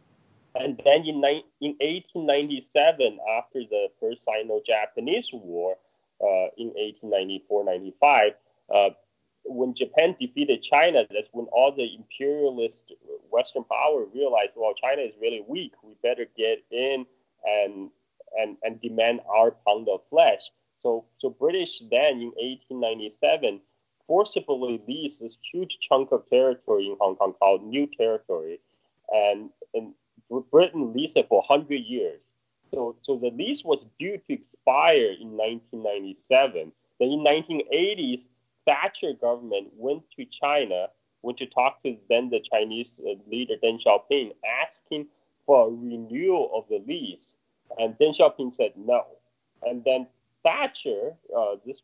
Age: 20-39